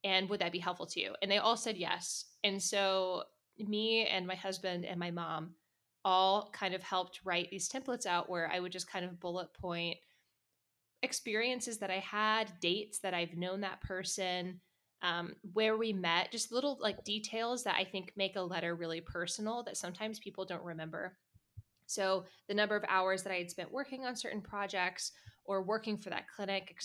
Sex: female